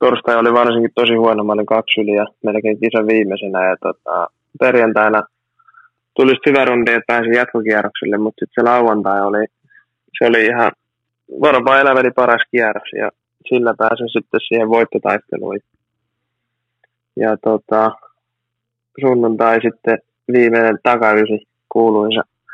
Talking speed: 110 wpm